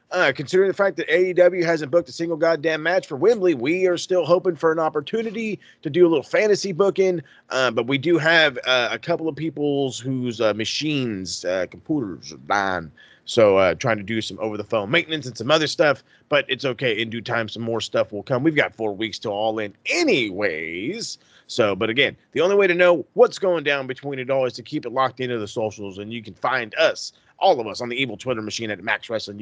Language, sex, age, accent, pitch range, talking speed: English, male, 30-49, American, 115-165 Hz, 230 wpm